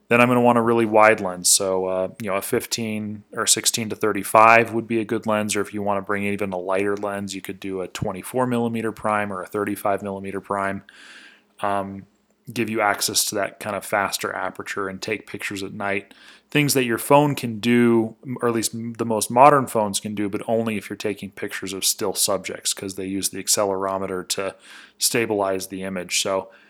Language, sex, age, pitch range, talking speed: English, male, 20-39, 100-120 Hz, 215 wpm